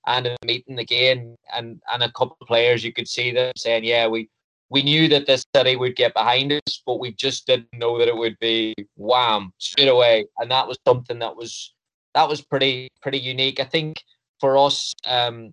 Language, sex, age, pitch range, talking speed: English, male, 20-39, 120-135 Hz, 210 wpm